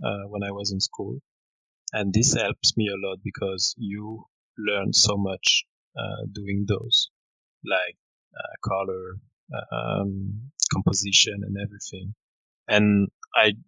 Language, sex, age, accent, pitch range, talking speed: English, male, 30-49, French, 100-110 Hz, 130 wpm